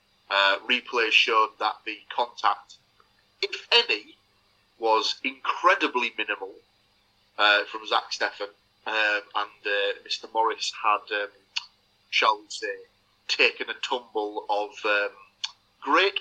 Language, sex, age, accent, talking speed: English, male, 30-49, British, 115 wpm